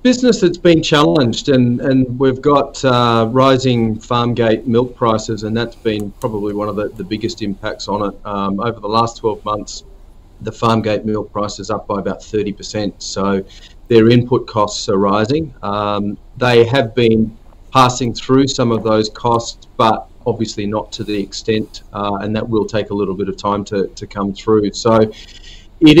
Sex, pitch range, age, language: male, 105-120 Hz, 40-59, English